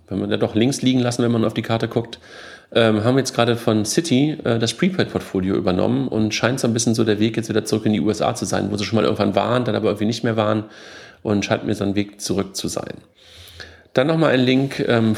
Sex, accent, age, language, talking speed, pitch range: male, German, 40-59, German, 260 wpm, 105-115 Hz